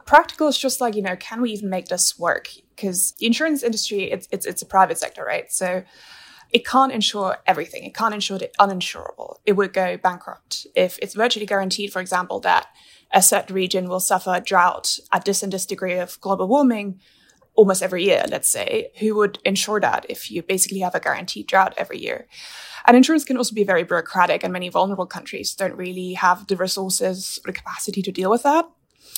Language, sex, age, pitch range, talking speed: English, female, 20-39, 185-235 Hz, 205 wpm